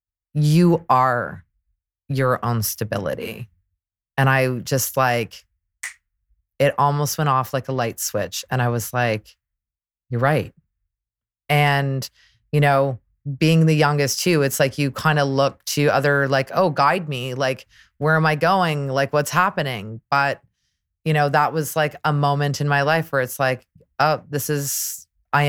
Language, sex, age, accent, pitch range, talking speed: English, female, 30-49, American, 125-160 Hz, 160 wpm